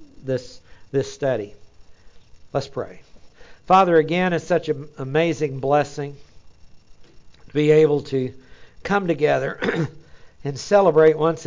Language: English